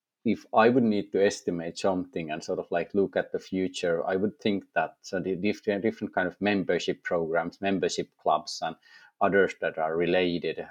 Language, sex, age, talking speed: English, male, 30-49, 185 wpm